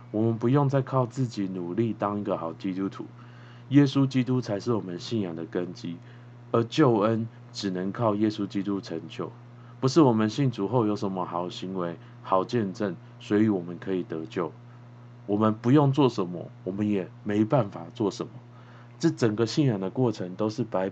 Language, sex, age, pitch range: Chinese, male, 20-39, 100-120 Hz